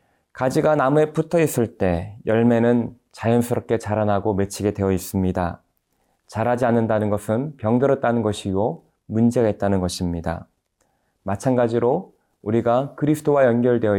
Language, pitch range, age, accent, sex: Korean, 100-130 Hz, 20-39, native, male